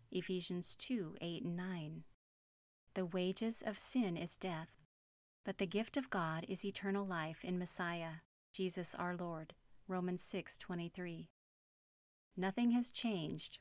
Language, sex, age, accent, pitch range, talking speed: English, female, 40-59, American, 170-195 Hz, 130 wpm